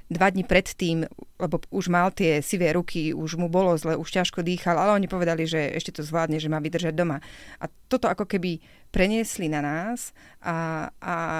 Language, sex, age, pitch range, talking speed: Slovak, female, 30-49, 170-195 Hz, 190 wpm